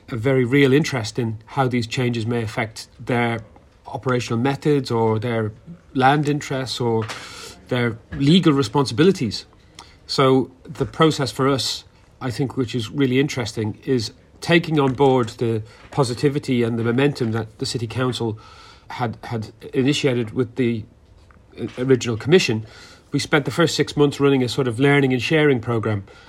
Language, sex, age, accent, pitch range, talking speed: English, male, 40-59, British, 115-140 Hz, 150 wpm